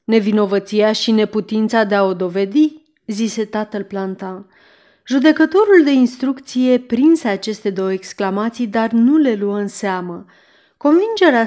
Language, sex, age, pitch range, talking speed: Romanian, female, 30-49, 195-250 Hz, 125 wpm